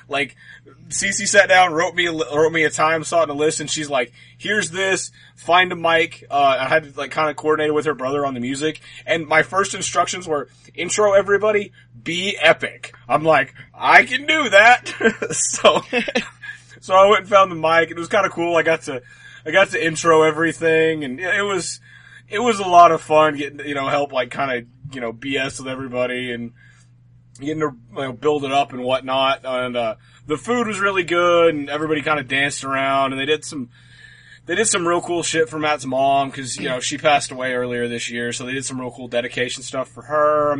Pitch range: 125-165 Hz